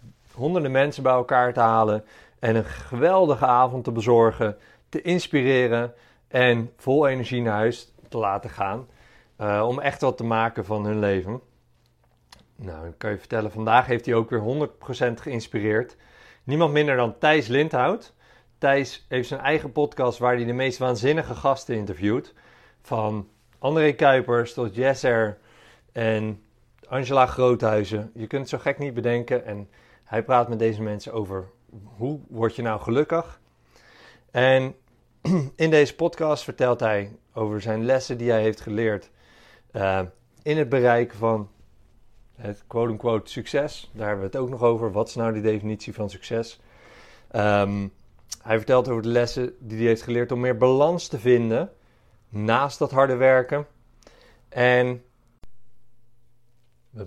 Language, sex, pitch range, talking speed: Dutch, male, 110-130 Hz, 150 wpm